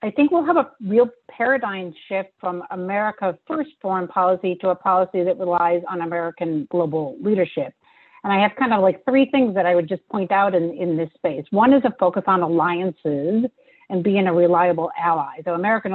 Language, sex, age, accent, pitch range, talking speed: English, female, 50-69, American, 175-210 Hz, 200 wpm